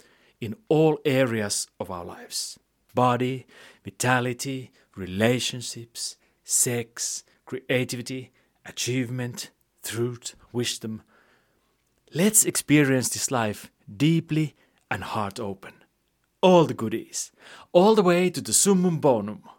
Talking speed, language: 100 wpm, English